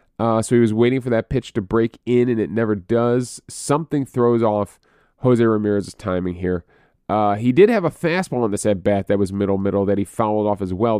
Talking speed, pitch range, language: 220 wpm, 100-125 Hz, English